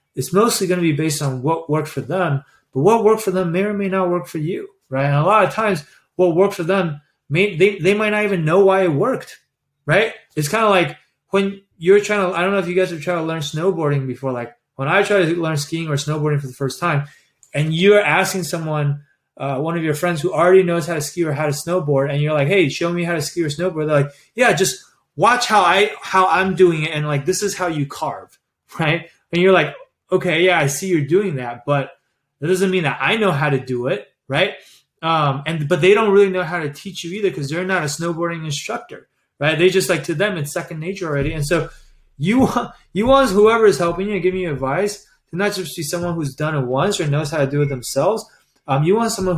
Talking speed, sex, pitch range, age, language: 255 wpm, male, 145-190 Hz, 20-39, English